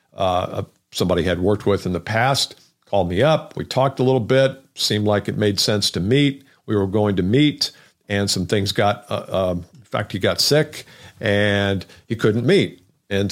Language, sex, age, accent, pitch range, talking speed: English, male, 50-69, American, 100-135 Hz, 200 wpm